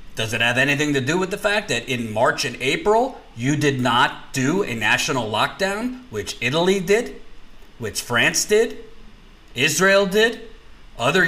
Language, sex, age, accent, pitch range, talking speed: English, male, 40-59, American, 130-205 Hz, 160 wpm